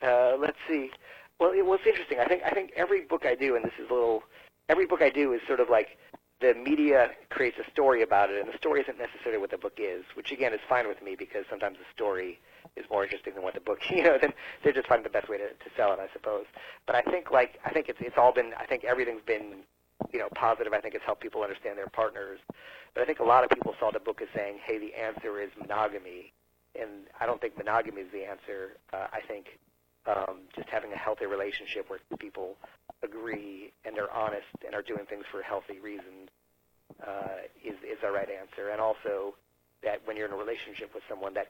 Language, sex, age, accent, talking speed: English, male, 50-69, American, 240 wpm